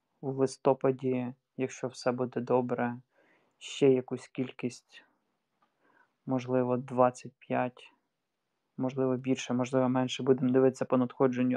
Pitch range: 125-140 Hz